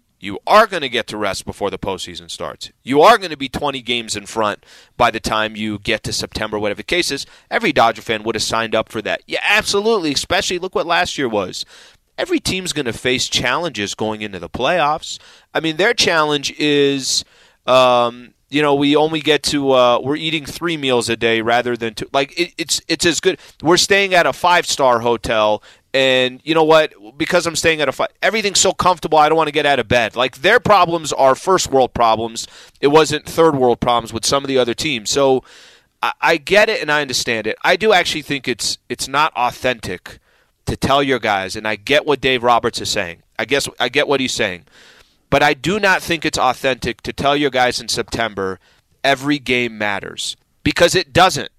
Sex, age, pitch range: male, 30-49, 115-160 Hz